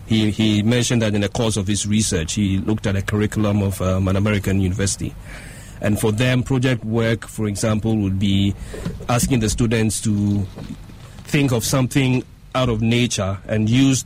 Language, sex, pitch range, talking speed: English, male, 105-120 Hz, 175 wpm